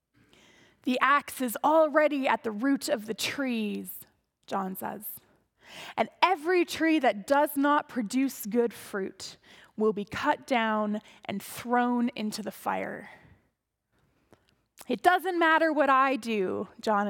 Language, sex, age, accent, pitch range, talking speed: English, female, 20-39, American, 220-305 Hz, 130 wpm